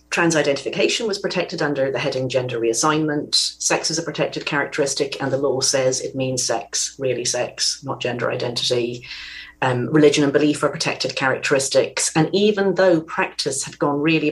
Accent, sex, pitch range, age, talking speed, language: British, female, 140-170 Hz, 40-59, 170 wpm, English